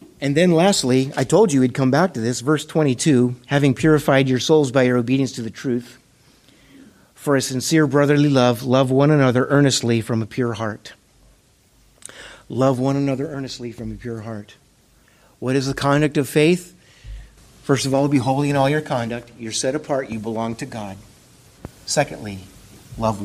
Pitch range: 120-150 Hz